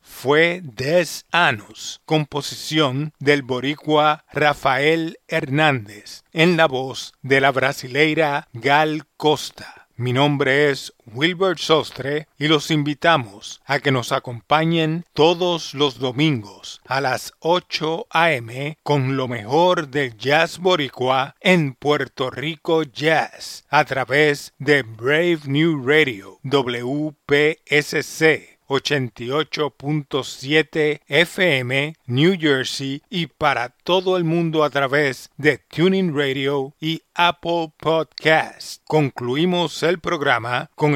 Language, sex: English, male